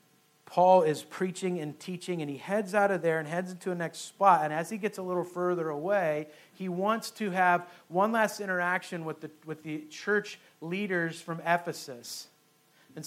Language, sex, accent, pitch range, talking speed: English, male, American, 170-205 Hz, 185 wpm